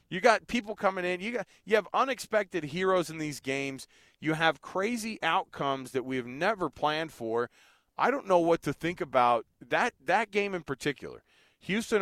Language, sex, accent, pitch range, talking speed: English, male, American, 130-175 Hz, 185 wpm